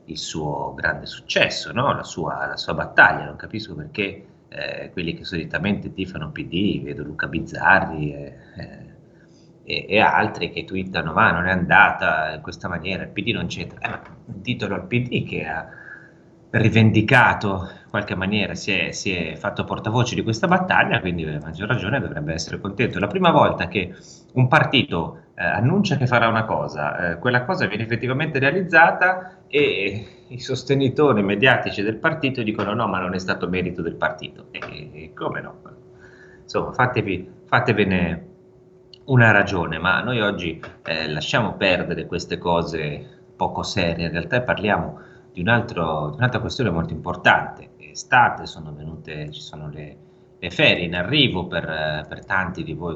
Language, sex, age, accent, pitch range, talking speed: Italian, male, 30-49, native, 85-125 Hz, 165 wpm